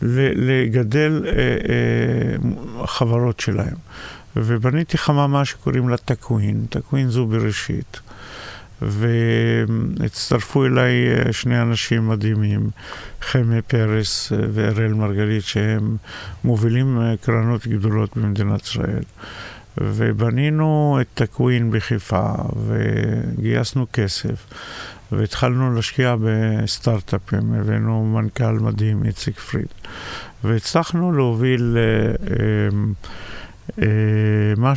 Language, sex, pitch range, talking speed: Hebrew, male, 110-125 Hz, 75 wpm